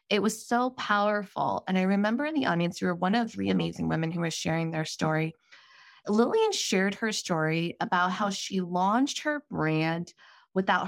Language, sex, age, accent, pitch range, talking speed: English, female, 20-39, American, 170-235 Hz, 180 wpm